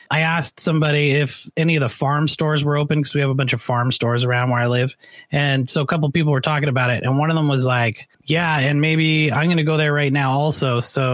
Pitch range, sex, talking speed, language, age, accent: 125-150 Hz, male, 275 wpm, English, 30-49, American